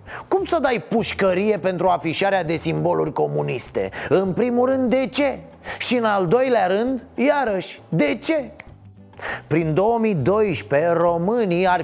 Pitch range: 160-225 Hz